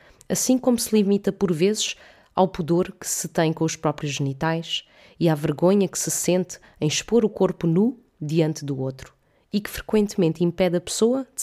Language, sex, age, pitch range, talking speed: Portuguese, female, 20-39, 145-180 Hz, 190 wpm